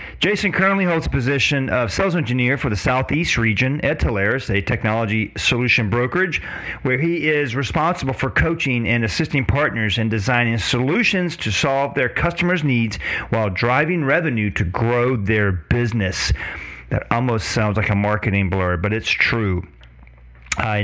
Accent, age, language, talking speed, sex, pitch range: American, 40-59, English, 155 wpm, male, 110-165 Hz